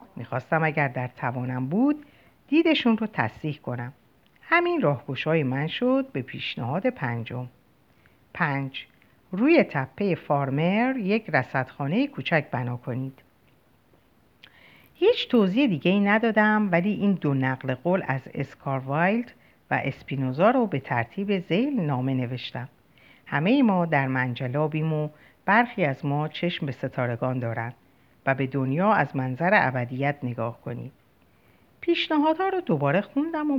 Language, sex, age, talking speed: Persian, female, 60-79, 130 wpm